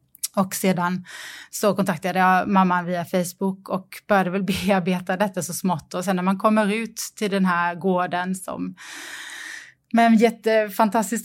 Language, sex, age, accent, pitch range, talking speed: Swedish, female, 20-39, native, 180-215 Hz, 155 wpm